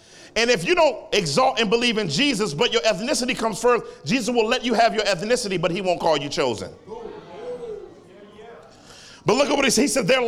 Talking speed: 210 wpm